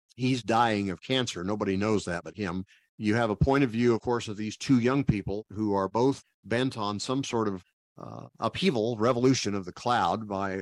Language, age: English, 50-69